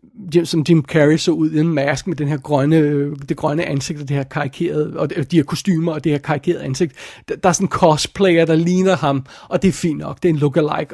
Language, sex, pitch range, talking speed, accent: Danish, male, 145-175 Hz, 250 wpm, native